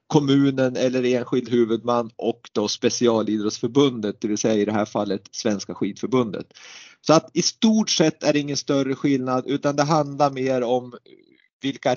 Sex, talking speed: male, 160 wpm